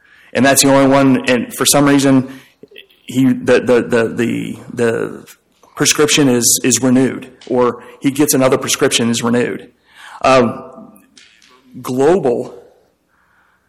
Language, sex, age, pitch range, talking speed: English, male, 40-59, 115-135 Hz, 125 wpm